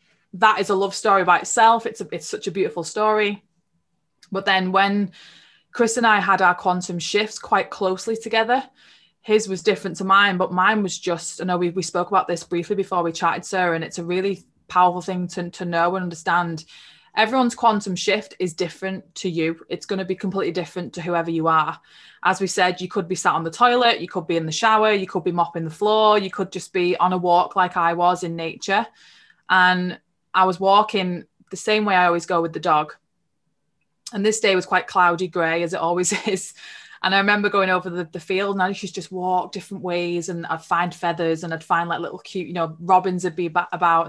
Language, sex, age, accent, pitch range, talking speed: English, female, 20-39, British, 175-200 Hz, 225 wpm